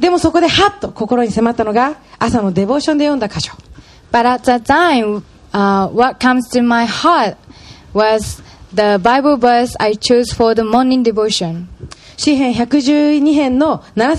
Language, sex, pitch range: Japanese, female, 220-295 Hz